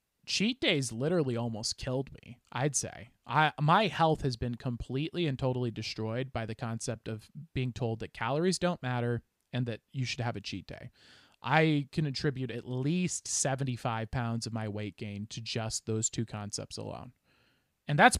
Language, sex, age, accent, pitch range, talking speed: English, male, 20-39, American, 115-165 Hz, 180 wpm